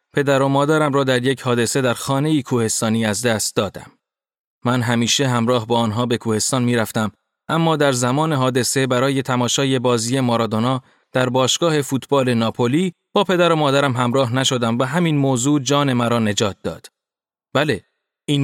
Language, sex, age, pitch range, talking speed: Persian, male, 30-49, 120-145 Hz, 155 wpm